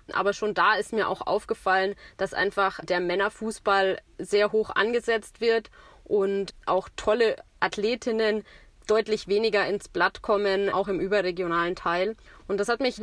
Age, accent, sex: 20-39, German, female